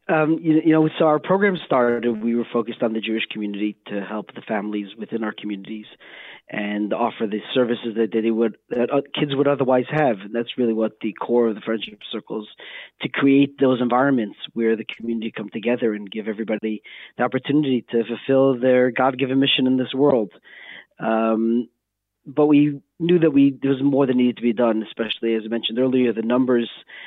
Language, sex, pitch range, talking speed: English, male, 115-135 Hz, 195 wpm